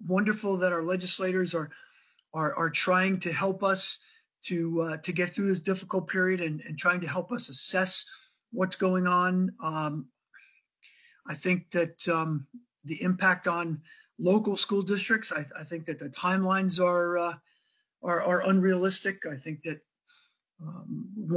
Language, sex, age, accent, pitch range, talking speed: English, male, 50-69, American, 165-195 Hz, 155 wpm